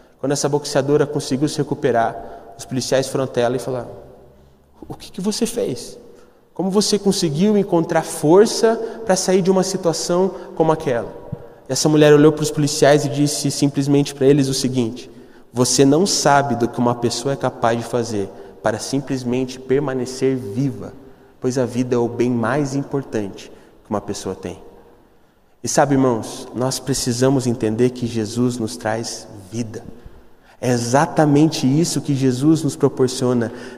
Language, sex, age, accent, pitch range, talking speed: Portuguese, male, 20-39, Brazilian, 115-155 Hz, 160 wpm